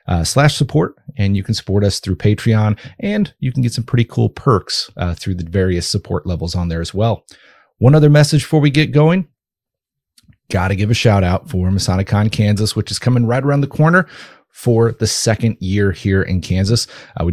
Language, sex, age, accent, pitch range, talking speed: English, male, 30-49, American, 95-120 Hz, 205 wpm